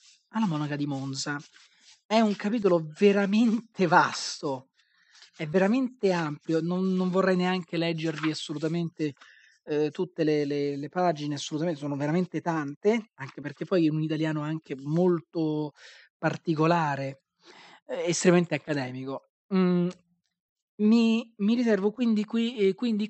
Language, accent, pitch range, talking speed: Italian, native, 150-195 Hz, 120 wpm